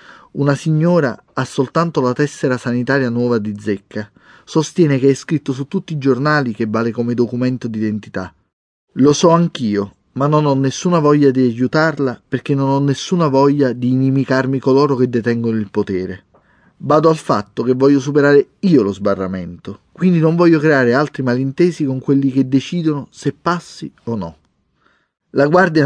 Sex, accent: male, native